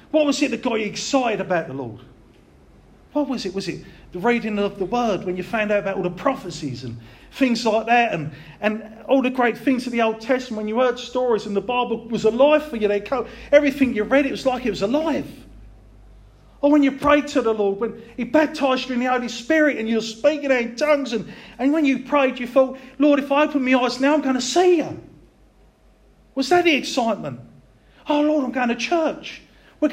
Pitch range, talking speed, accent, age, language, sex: 170-260 Hz, 230 wpm, British, 40-59, English, male